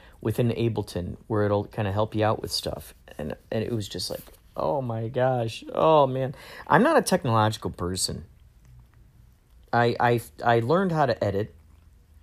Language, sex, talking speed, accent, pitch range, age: English, male, 165 wpm, American, 80-125 Hz, 40-59